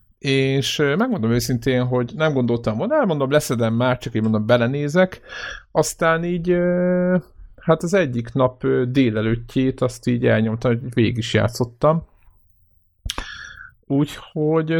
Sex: male